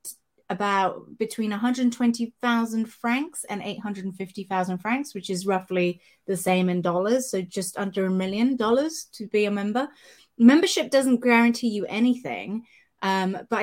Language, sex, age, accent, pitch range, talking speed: English, female, 30-49, British, 185-230 Hz, 135 wpm